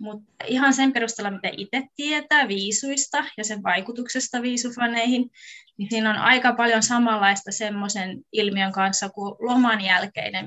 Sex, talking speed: female, 140 wpm